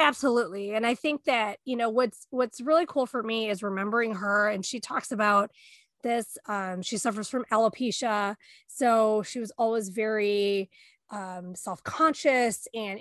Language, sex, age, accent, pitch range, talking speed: English, female, 20-39, American, 215-260 Hz, 155 wpm